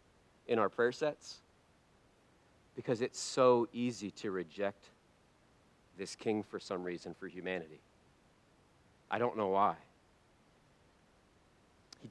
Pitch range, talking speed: 115-185 Hz, 110 wpm